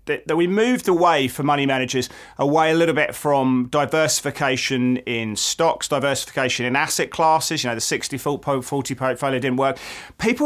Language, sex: English, male